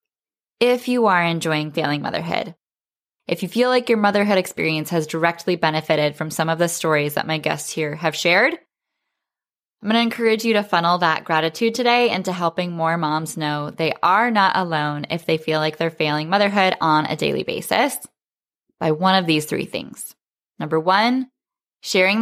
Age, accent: 10-29, American